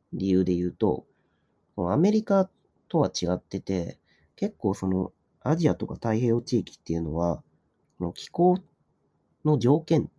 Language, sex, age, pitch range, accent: Japanese, male, 40-59, 90-145 Hz, native